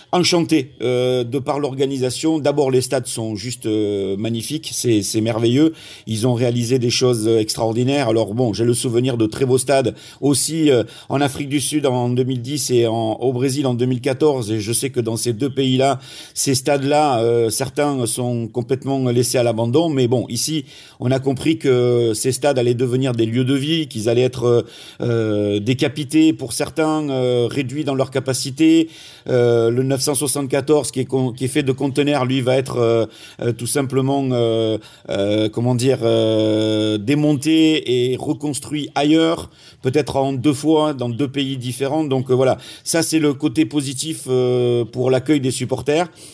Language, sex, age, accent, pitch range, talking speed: French, male, 50-69, French, 120-145 Hz, 180 wpm